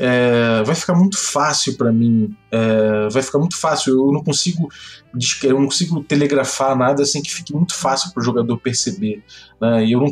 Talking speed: 190 wpm